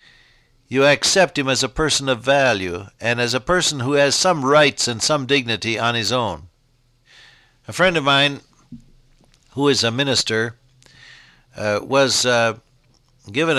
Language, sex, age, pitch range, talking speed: English, male, 60-79, 115-145 Hz, 150 wpm